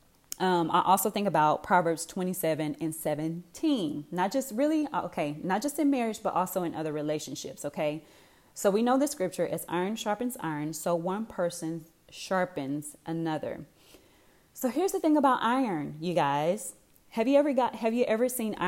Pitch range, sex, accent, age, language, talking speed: 170-230 Hz, female, American, 20-39, English, 170 wpm